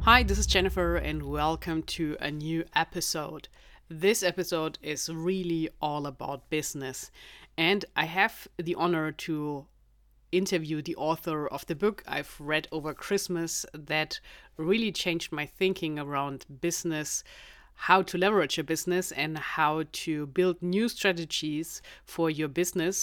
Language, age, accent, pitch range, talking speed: English, 30-49, German, 150-180 Hz, 140 wpm